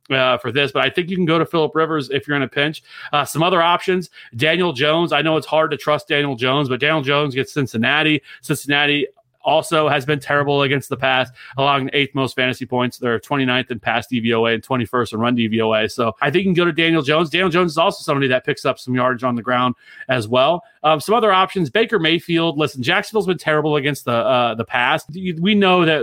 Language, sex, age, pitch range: English, male, 30-49, 125-155 Hz